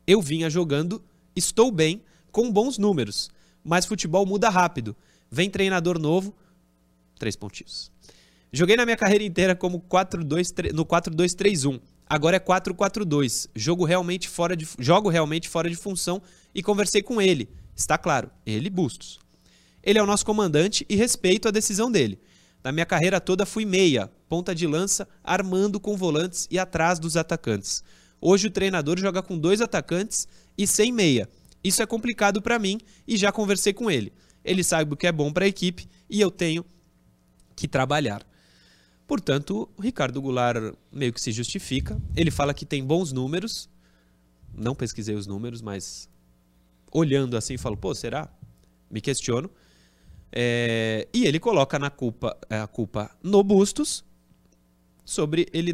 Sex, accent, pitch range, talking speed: male, Brazilian, 115-195 Hz, 150 wpm